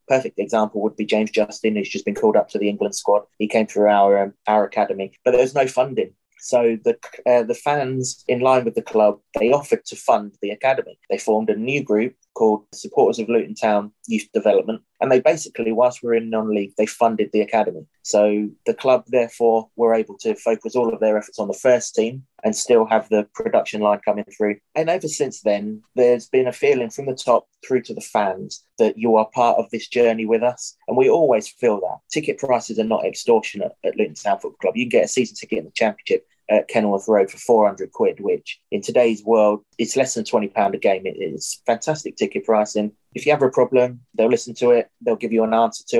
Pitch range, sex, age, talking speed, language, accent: 105-125 Hz, male, 20-39, 225 wpm, English, British